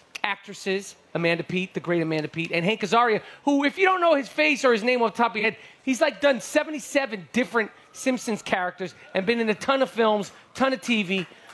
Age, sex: 30-49, male